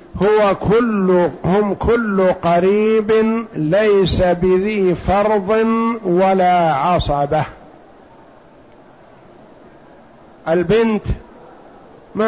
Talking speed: 60 wpm